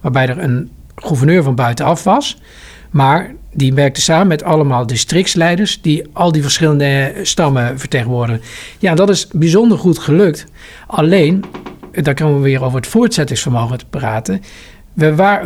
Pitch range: 130-175 Hz